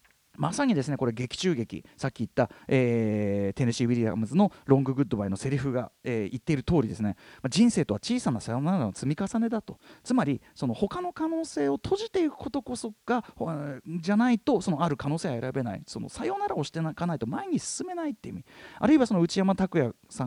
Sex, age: male, 30-49